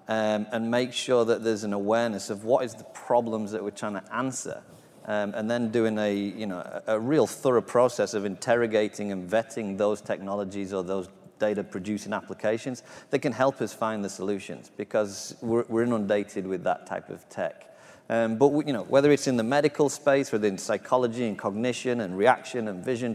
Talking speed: 200 wpm